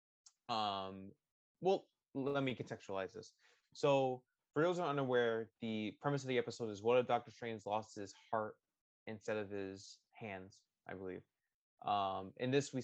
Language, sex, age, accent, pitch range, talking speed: English, male, 20-39, American, 105-125 Hz, 165 wpm